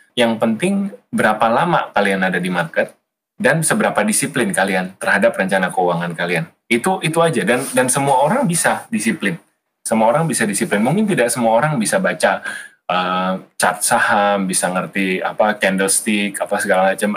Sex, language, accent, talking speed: male, Indonesian, native, 155 wpm